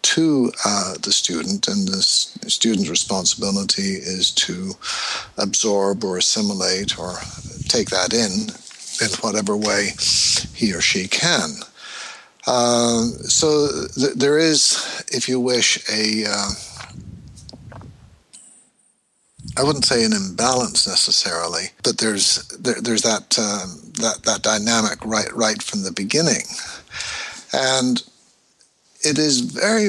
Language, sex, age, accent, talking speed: English, male, 60-79, American, 115 wpm